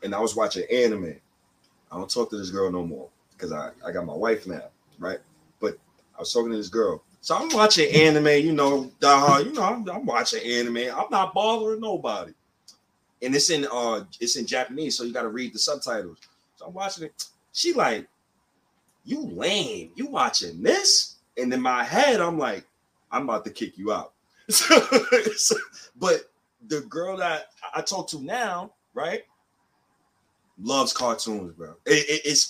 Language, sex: English, male